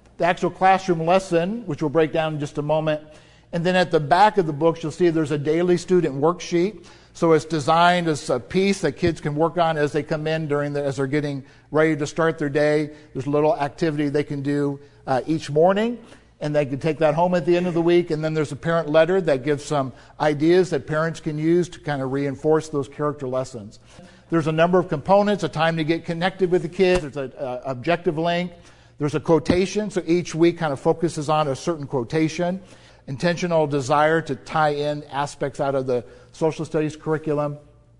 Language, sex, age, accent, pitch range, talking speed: English, male, 50-69, American, 145-175 Hz, 215 wpm